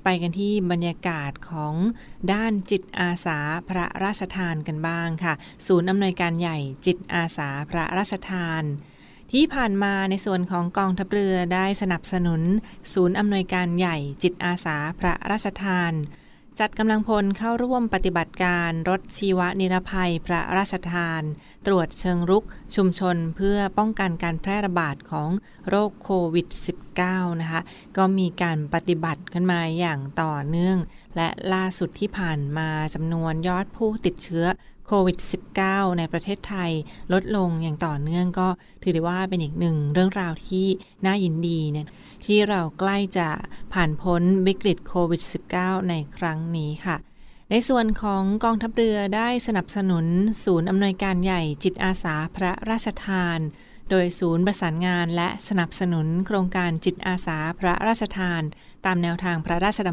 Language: Thai